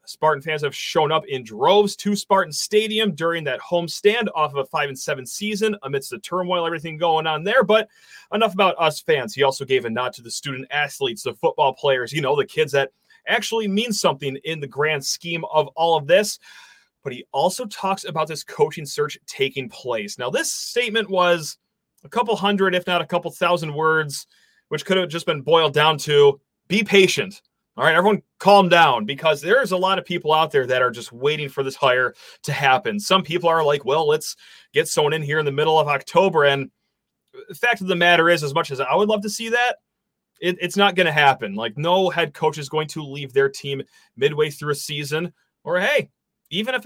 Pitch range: 150-205 Hz